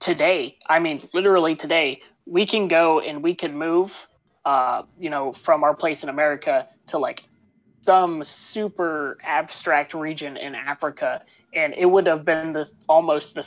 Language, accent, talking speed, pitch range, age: English, American, 160 wpm, 150-180 Hz, 20-39